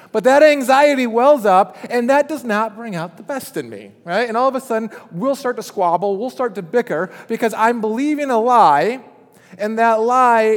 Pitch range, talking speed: 185-240 Hz, 210 wpm